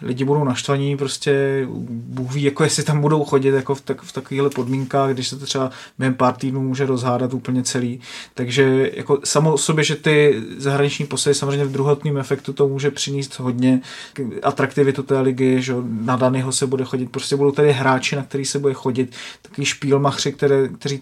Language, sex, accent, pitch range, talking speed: Czech, male, native, 130-145 Hz, 185 wpm